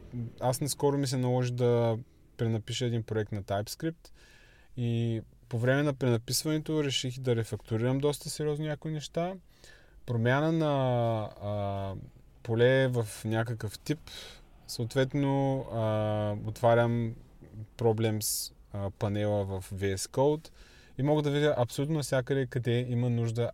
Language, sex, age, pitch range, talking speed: Bulgarian, male, 20-39, 110-135 Hz, 120 wpm